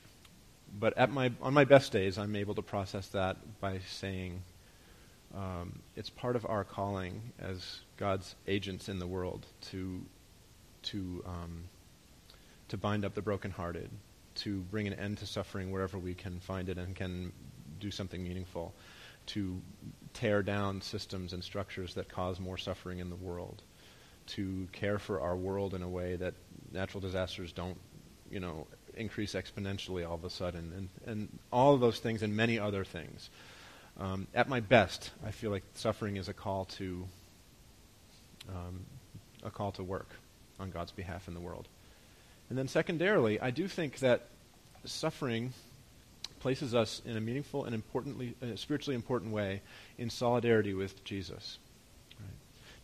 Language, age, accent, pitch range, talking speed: English, 30-49, American, 95-115 Hz, 155 wpm